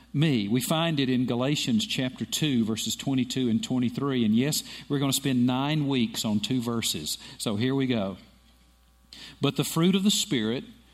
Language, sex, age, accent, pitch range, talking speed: English, male, 50-69, American, 110-155 Hz, 180 wpm